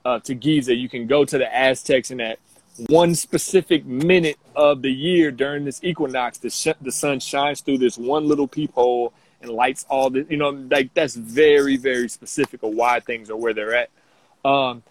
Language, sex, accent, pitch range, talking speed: English, male, American, 125-150 Hz, 195 wpm